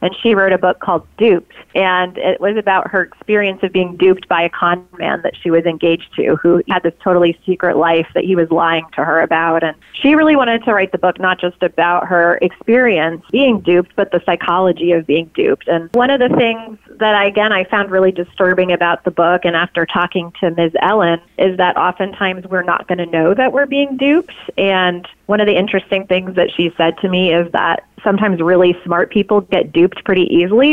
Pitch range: 175-210 Hz